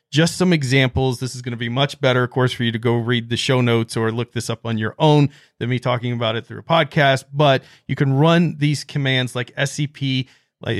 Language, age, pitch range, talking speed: English, 40-59, 120-140 Hz, 240 wpm